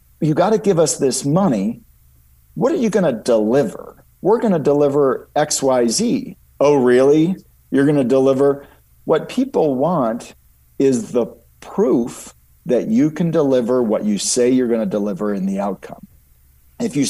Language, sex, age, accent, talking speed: English, male, 50-69, American, 160 wpm